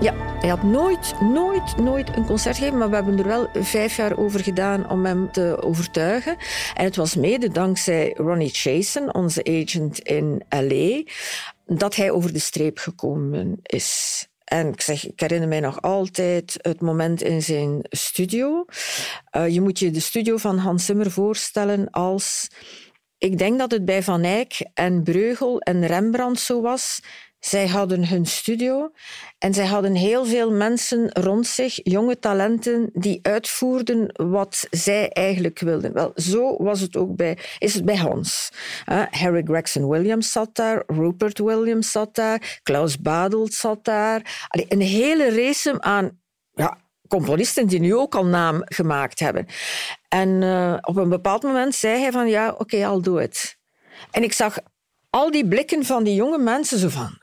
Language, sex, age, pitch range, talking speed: Dutch, female, 50-69, 175-230 Hz, 170 wpm